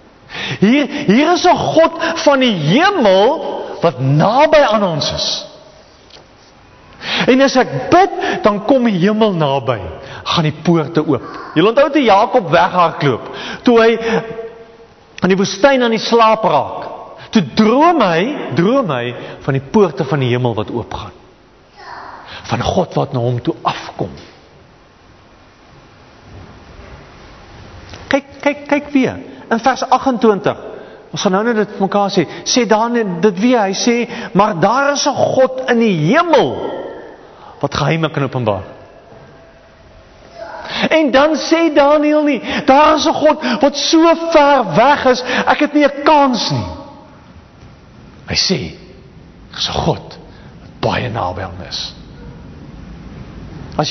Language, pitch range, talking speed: English, 180-280 Hz, 135 wpm